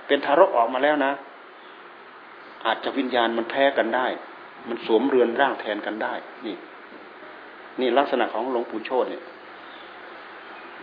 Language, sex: Thai, male